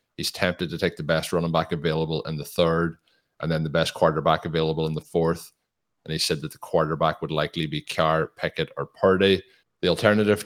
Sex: male